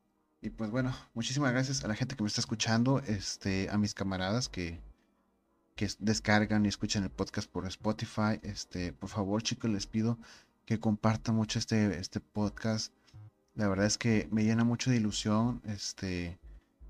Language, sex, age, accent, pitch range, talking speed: Spanish, male, 30-49, Mexican, 100-115 Hz, 165 wpm